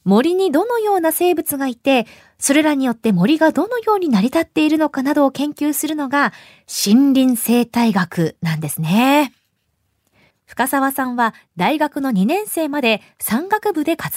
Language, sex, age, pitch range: Japanese, female, 20-39, 215-310 Hz